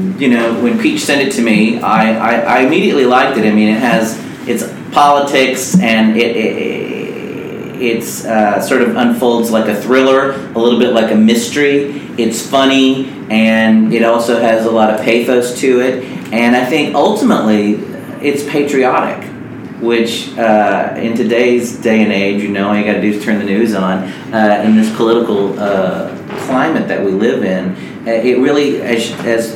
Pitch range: 110-130 Hz